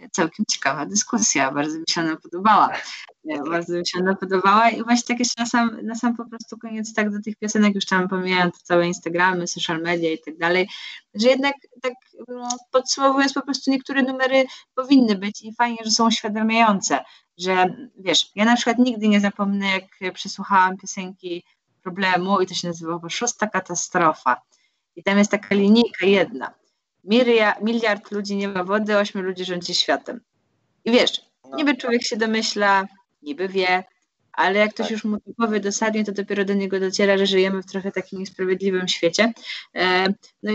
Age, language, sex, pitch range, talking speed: 20-39, Polish, female, 190-240 Hz, 170 wpm